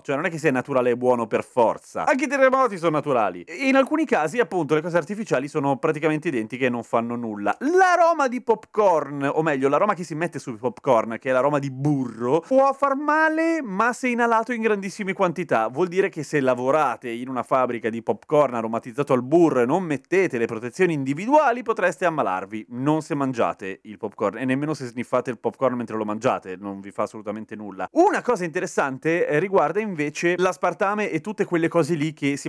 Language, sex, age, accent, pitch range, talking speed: Italian, male, 30-49, native, 125-195 Hz, 200 wpm